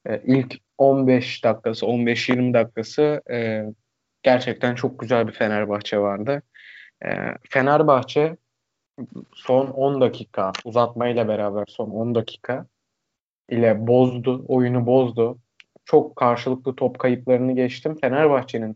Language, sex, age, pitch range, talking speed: Turkish, male, 20-39, 115-140 Hz, 110 wpm